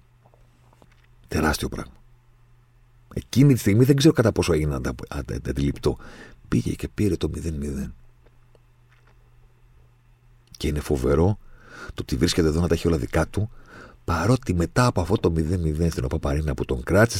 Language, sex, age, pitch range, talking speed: Greek, male, 50-69, 85-120 Hz, 155 wpm